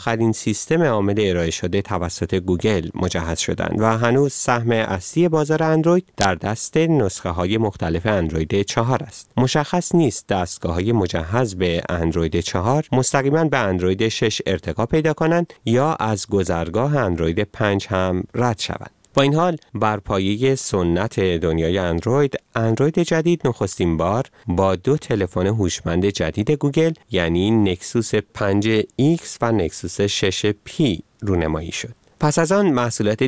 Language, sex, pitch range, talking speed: Persian, male, 95-135 Hz, 135 wpm